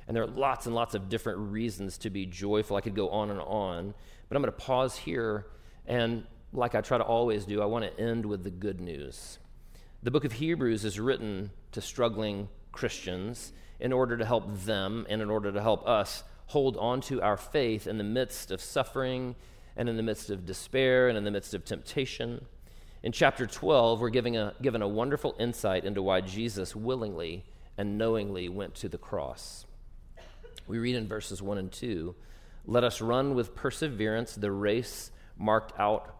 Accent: American